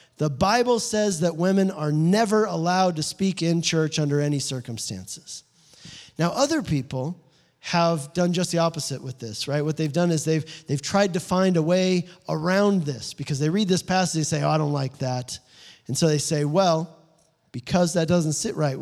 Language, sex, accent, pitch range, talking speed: English, male, American, 145-185 Hz, 195 wpm